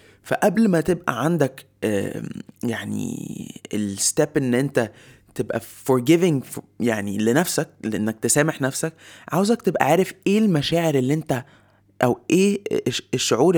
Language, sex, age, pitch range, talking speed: Arabic, male, 20-39, 115-160 Hz, 110 wpm